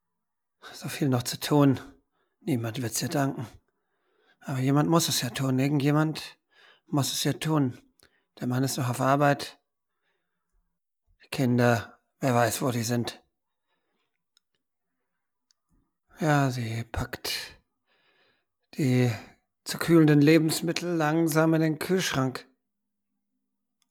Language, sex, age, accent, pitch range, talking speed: German, male, 50-69, German, 125-150 Hz, 110 wpm